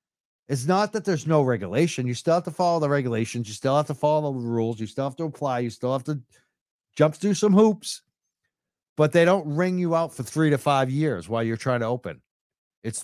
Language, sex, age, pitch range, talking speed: English, male, 50-69, 115-160 Hz, 230 wpm